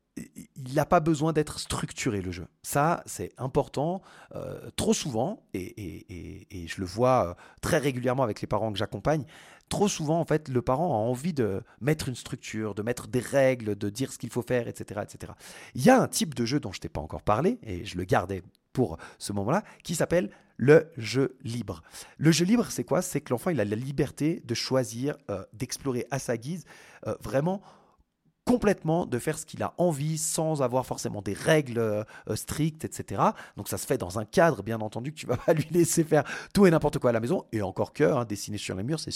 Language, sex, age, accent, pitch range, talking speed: French, male, 30-49, French, 110-150 Hz, 225 wpm